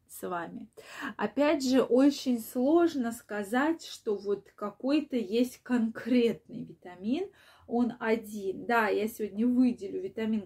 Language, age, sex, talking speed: Russian, 20-39, female, 120 wpm